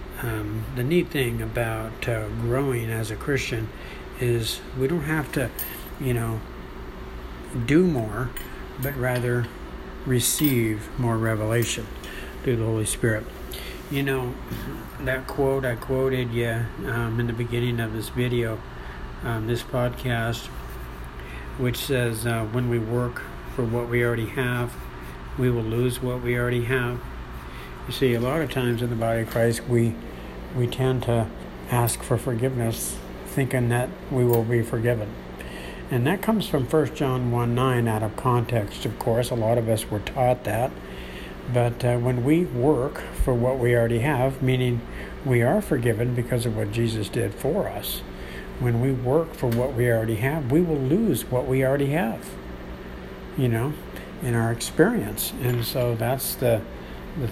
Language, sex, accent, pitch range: English, male, American, 110-125 Hz